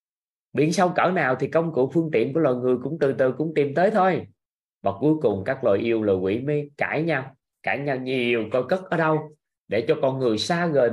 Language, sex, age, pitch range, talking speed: Vietnamese, male, 20-39, 105-150 Hz, 235 wpm